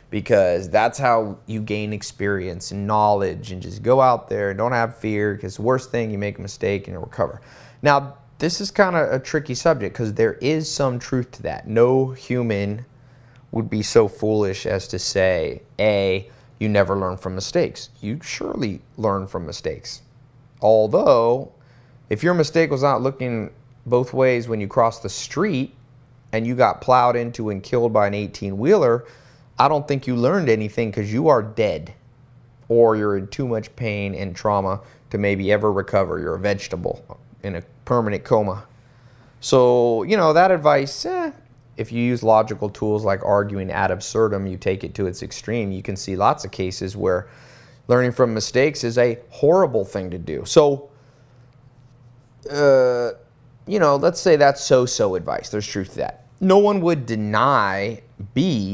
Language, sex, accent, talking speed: English, male, American, 175 wpm